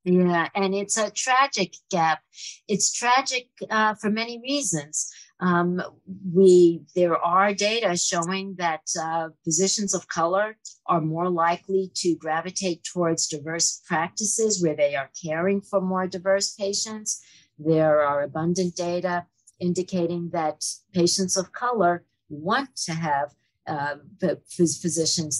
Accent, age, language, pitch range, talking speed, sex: American, 50-69, English, 160-220 Hz, 125 wpm, female